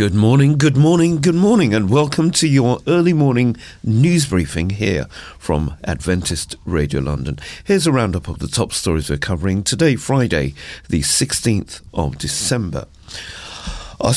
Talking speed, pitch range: 150 wpm, 75-110 Hz